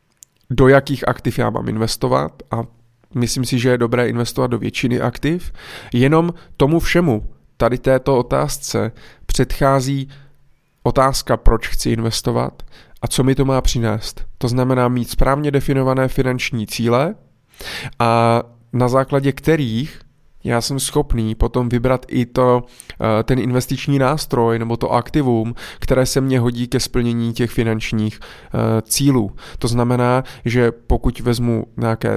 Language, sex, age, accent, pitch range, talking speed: Czech, male, 20-39, native, 115-135 Hz, 130 wpm